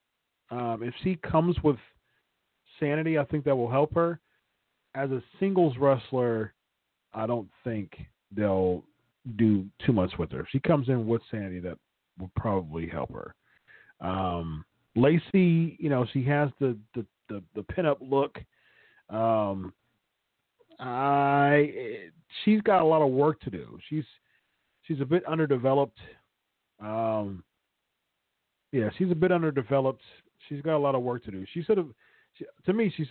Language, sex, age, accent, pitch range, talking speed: English, male, 40-59, American, 100-145 Hz, 150 wpm